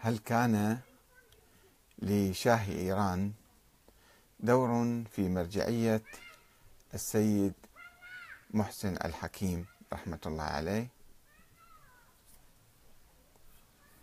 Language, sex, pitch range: Arabic, male, 100-130 Hz